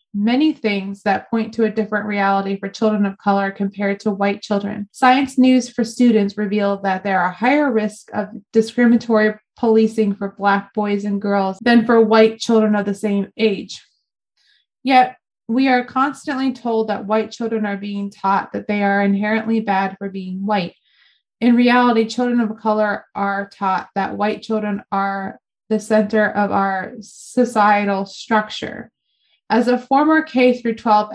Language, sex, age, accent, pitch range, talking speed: English, female, 20-39, American, 200-240 Hz, 160 wpm